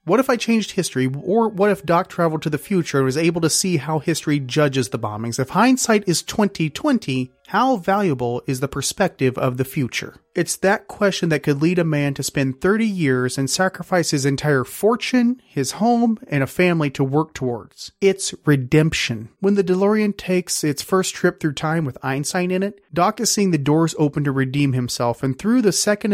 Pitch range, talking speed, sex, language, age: 140-195 Hz, 200 wpm, male, English, 30-49